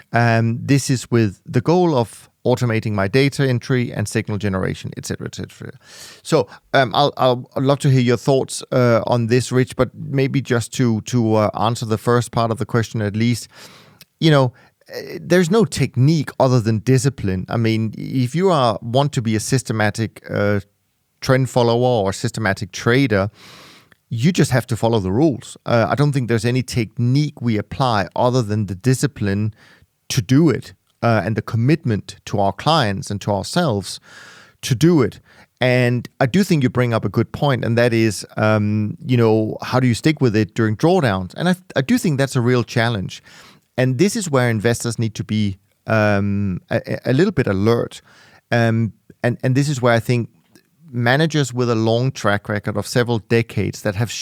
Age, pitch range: 30-49, 110-135 Hz